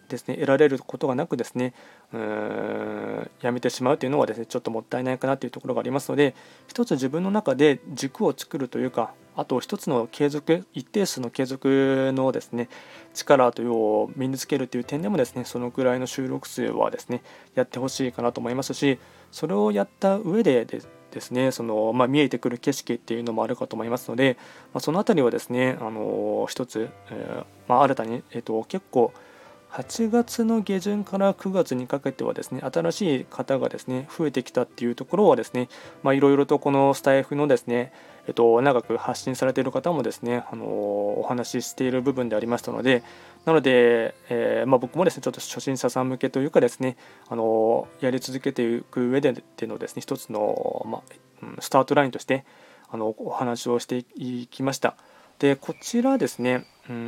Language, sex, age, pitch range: Japanese, male, 20-39, 120-140 Hz